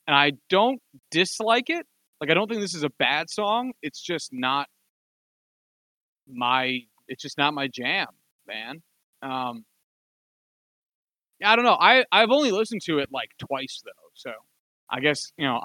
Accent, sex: American, male